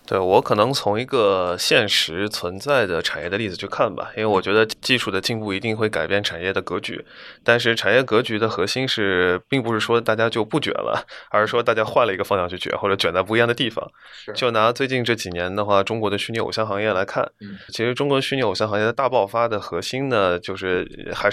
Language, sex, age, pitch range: Chinese, male, 20-39, 100-120 Hz